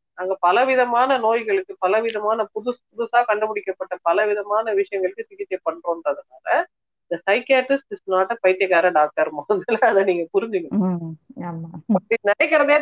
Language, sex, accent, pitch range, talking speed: Tamil, female, native, 180-240 Hz, 85 wpm